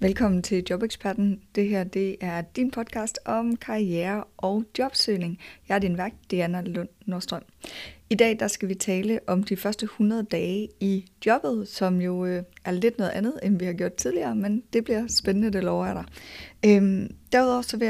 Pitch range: 190-220 Hz